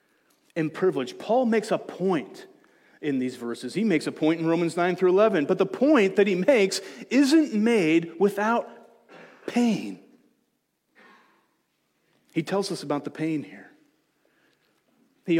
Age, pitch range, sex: 40-59, 170-230 Hz, male